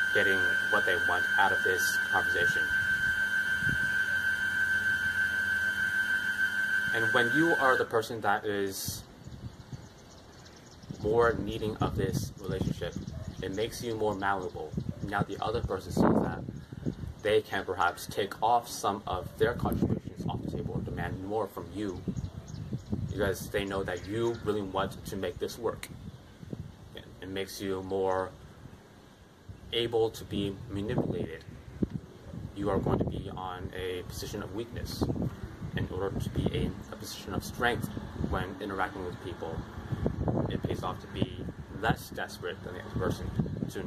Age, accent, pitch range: 20-39, American, 95-115 Hz